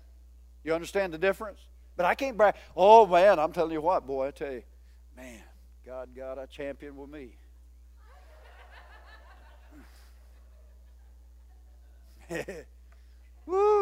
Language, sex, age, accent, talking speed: English, male, 50-69, American, 115 wpm